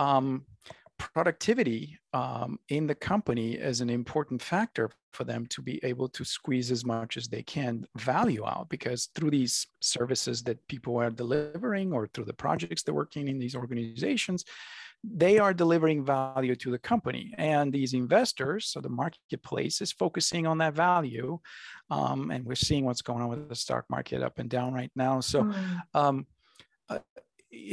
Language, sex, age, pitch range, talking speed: English, male, 50-69, 125-160 Hz, 170 wpm